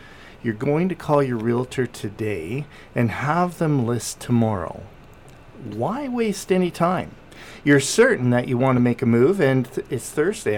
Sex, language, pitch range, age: male, English, 115-145 Hz, 50-69